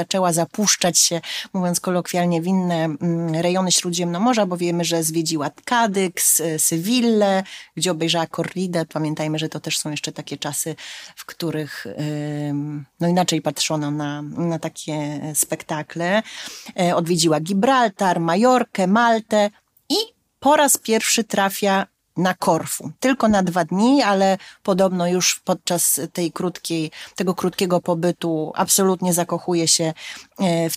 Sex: female